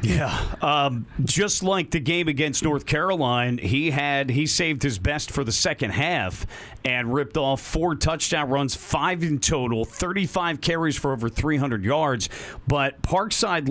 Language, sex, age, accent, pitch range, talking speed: English, male, 40-59, American, 135-170 Hz, 160 wpm